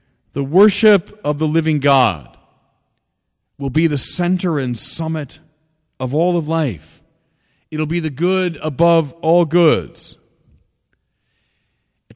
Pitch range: 130-185 Hz